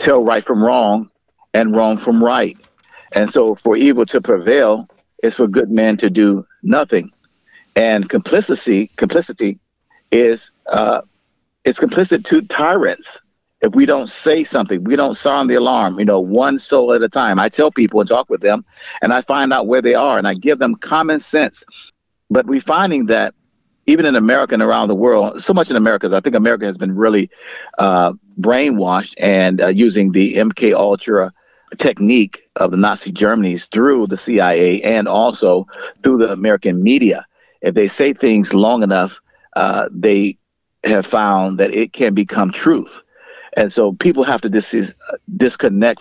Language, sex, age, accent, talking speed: English, male, 50-69, American, 170 wpm